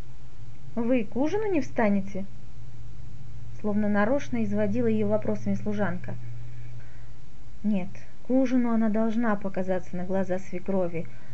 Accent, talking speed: native, 105 wpm